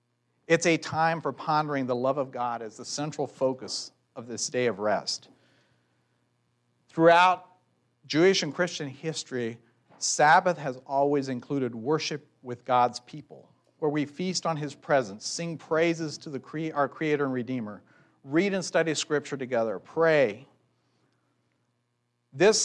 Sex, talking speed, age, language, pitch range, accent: male, 140 wpm, 50-69, English, 125-160 Hz, American